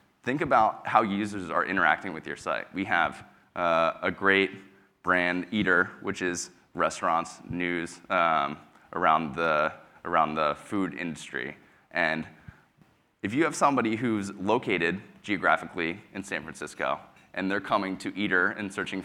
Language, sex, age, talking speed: English, male, 20-39, 140 wpm